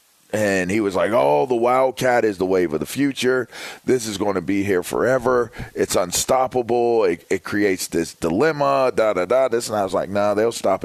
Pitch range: 95-115 Hz